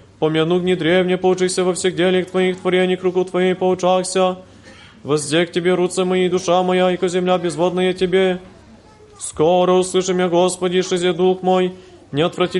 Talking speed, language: 150 wpm, Polish